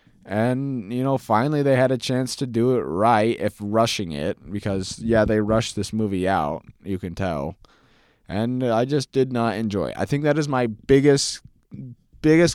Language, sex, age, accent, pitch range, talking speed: English, male, 20-39, American, 110-135 Hz, 185 wpm